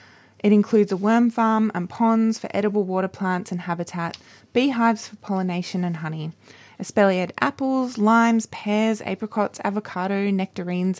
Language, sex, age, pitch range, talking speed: English, female, 20-39, 180-220 Hz, 135 wpm